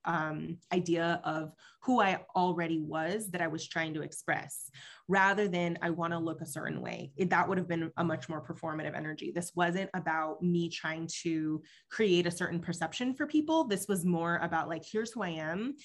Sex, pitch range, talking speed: female, 165-190 Hz, 195 wpm